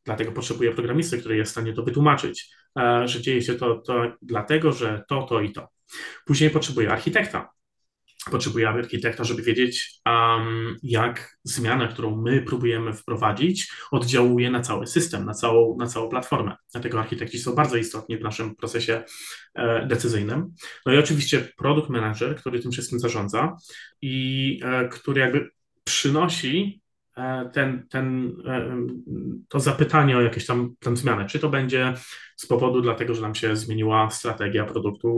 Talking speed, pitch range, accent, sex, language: 145 wpm, 115-130 Hz, native, male, Polish